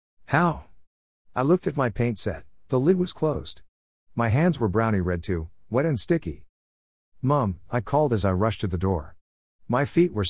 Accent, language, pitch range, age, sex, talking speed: American, English, 85-125 Hz, 50-69, male, 185 wpm